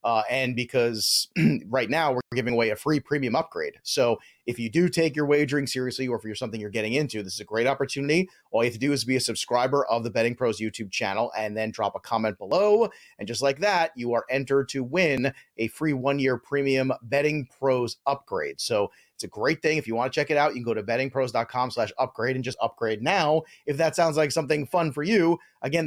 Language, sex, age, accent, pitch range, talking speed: English, male, 30-49, American, 120-155 Hz, 235 wpm